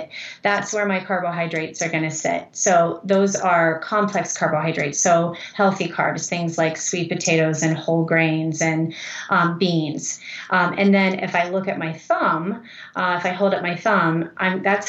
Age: 30-49